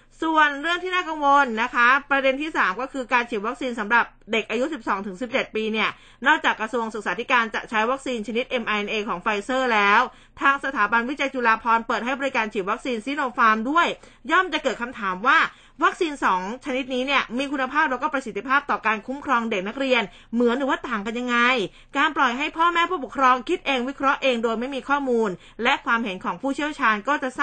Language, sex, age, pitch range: Thai, female, 20-39, 215-275 Hz